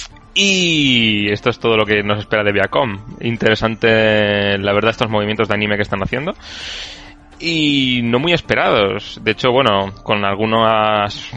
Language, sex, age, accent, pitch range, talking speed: Spanish, male, 20-39, Spanish, 105-130 Hz, 155 wpm